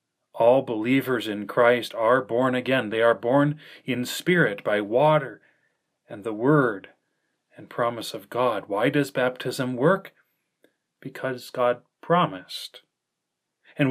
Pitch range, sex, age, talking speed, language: 125-155 Hz, male, 40-59, 125 wpm, English